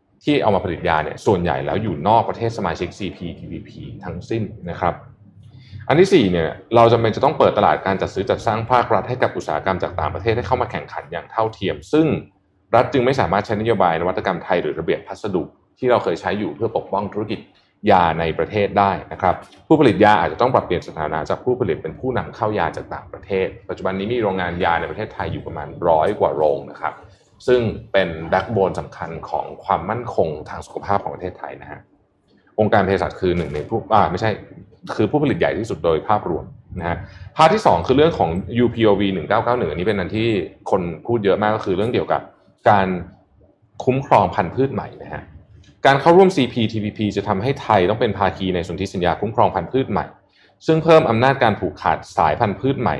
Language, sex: Thai, male